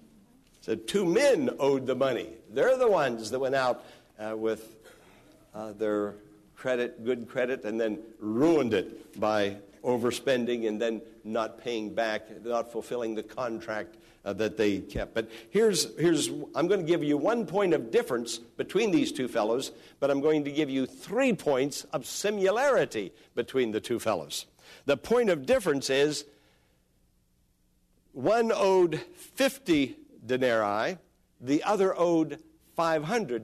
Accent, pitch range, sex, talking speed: American, 115-180 Hz, male, 145 wpm